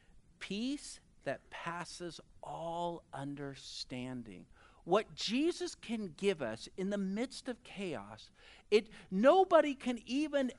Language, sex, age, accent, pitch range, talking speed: English, male, 50-69, American, 185-260 Hz, 110 wpm